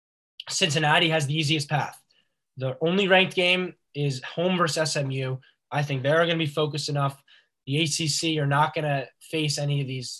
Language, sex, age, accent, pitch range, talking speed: English, male, 10-29, American, 135-165 Hz, 180 wpm